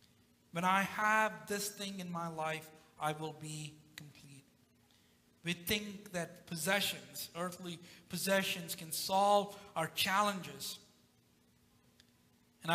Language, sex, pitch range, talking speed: English, male, 160-205 Hz, 110 wpm